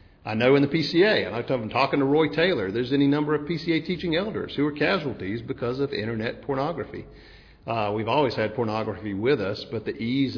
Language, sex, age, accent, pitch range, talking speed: English, male, 50-69, American, 100-130 Hz, 210 wpm